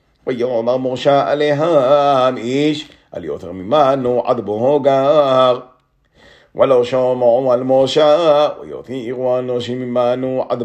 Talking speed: 100 wpm